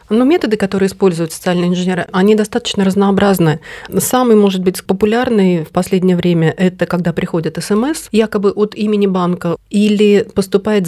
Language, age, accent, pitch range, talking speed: Russian, 30-49, native, 170-210 Hz, 150 wpm